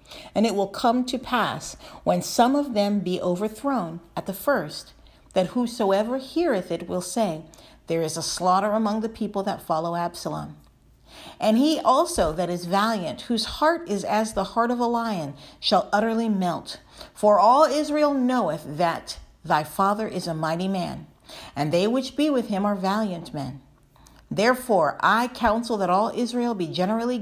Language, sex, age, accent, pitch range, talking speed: English, female, 50-69, American, 175-235 Hz, 170 wpm